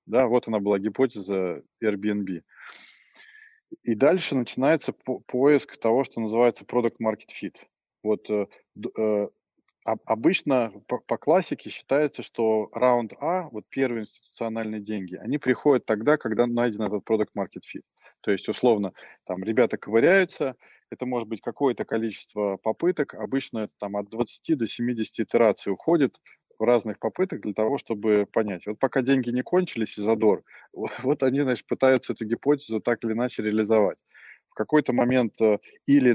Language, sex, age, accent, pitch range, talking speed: Russian, male, 20-39, native, 110-130 Hz, 135 wpm